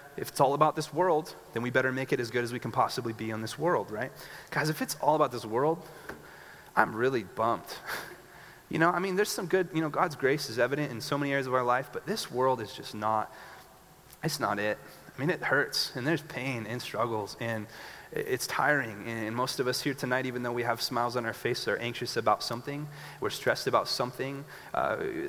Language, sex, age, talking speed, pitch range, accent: English, male, 30-49, 230 wpm, 120-155 Hz, American